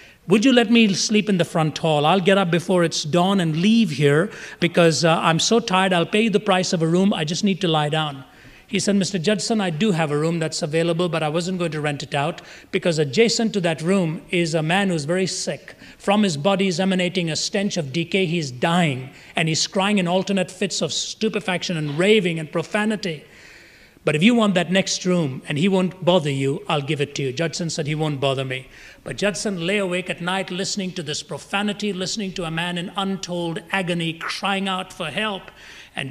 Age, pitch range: 30-49, 155-195 Hz